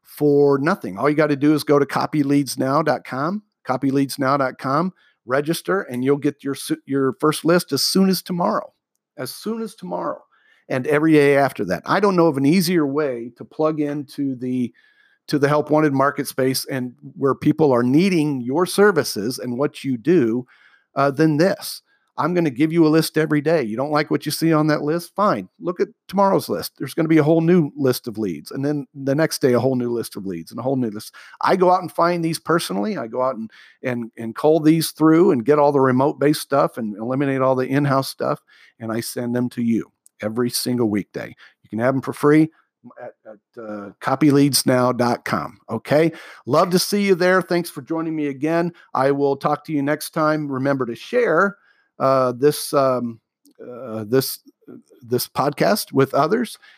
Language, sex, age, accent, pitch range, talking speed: English, male, 40-59, American, 130-160 Hz, 200 wpm